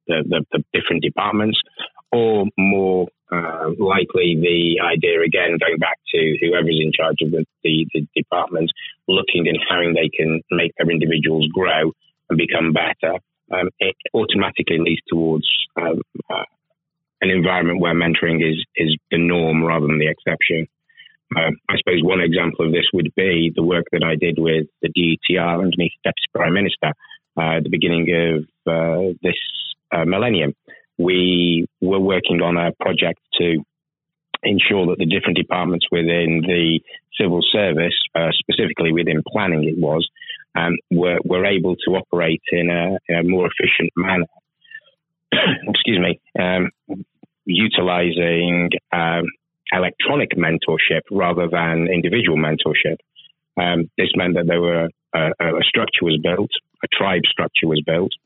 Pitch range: 80-90 Hz